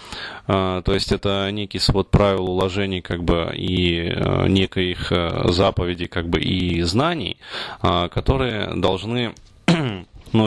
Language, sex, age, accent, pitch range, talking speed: Russian, male, 20-39, native, 95-115 Hz, 110 wpm